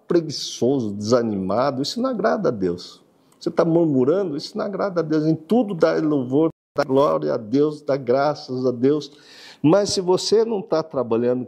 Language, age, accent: Portuguese, 50-69, Brazilian